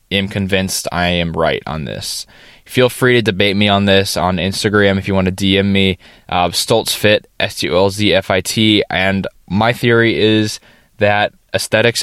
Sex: male